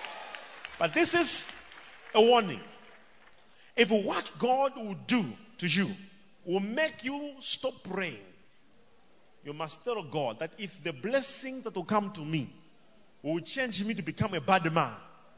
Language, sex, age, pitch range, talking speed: English, male, 40-59, 175-240 Hz, 150 wpm